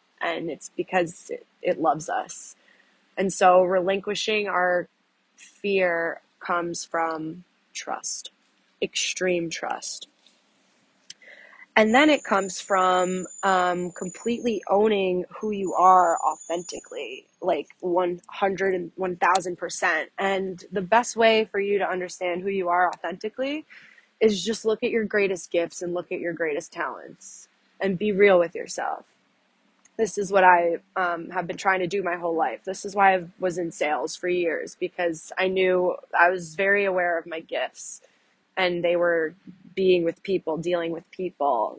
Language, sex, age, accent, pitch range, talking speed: English, female, 20-39, American, 175-205 Hz, 150 wpm